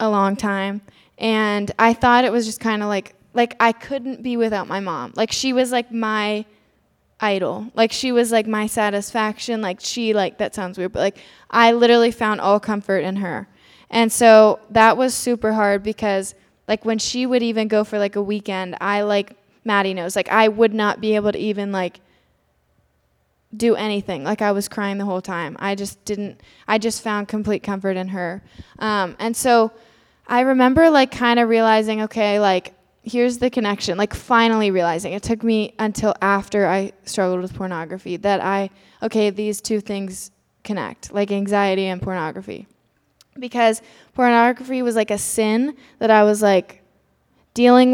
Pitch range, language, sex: 195-225 Hz, English, female